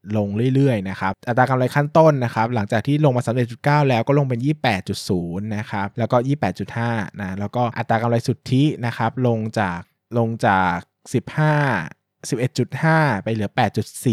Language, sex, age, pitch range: Thai, male, 20-39, 105-130 Hz